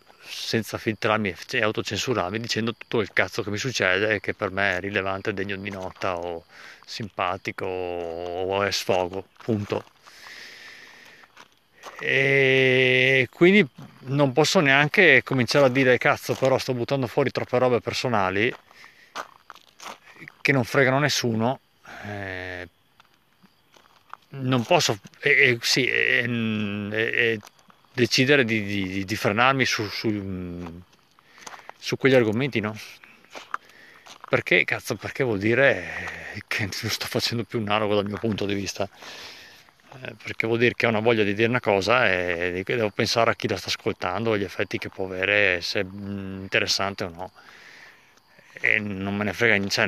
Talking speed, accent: 140 wpm, native